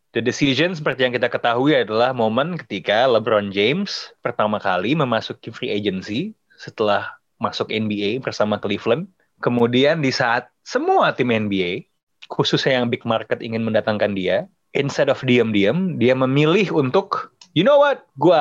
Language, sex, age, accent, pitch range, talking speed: Indonesian, male, 30-49, native, 120-165 Hz, 145 wpm